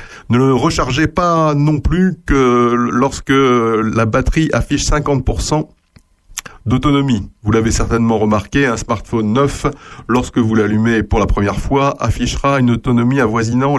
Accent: French